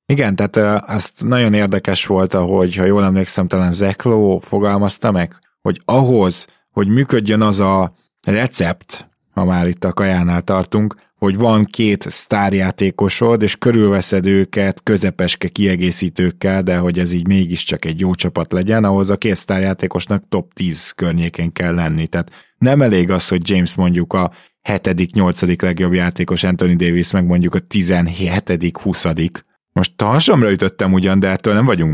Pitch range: 90-100 Hz